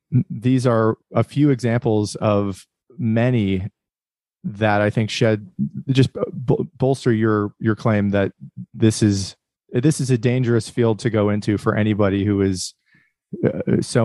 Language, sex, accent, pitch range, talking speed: English, male, American, 105-125 Hz, 135 wpm